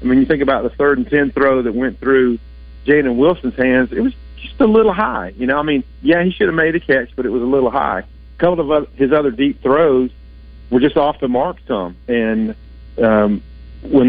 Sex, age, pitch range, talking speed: male, 50-69, 105-140 Hz, 225 wpm